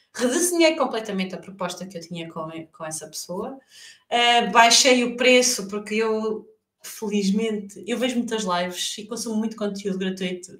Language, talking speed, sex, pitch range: Portuguese, 145 wpm, female, 200-255 Hz